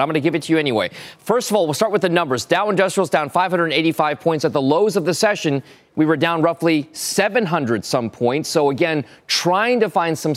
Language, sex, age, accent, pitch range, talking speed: English, male, 30-49, American, 145-185 Hz, 230 wpm